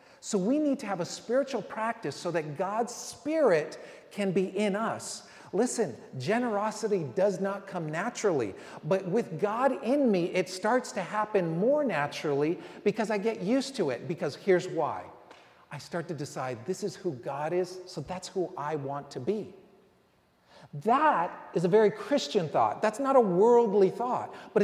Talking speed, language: 170 wpm, English